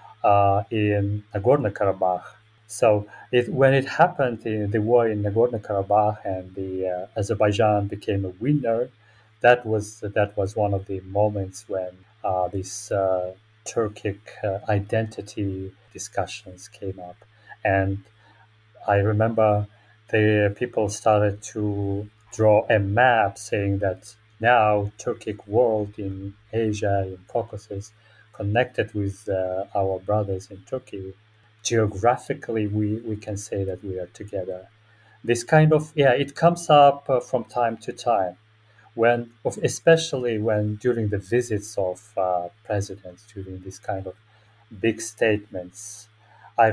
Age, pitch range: 30-49, 100-115 Hz